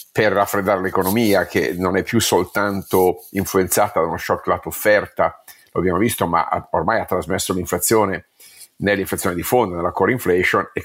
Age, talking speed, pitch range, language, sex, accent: 50-69, 160 wpm, 95-110 Hz, Italian, male, native